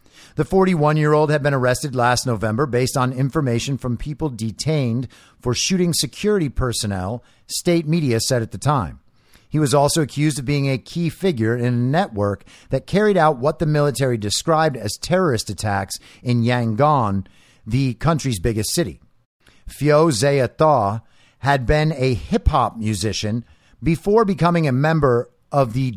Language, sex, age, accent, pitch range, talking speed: English, male, 50-69, American, 115-155 Hz, 150 wpm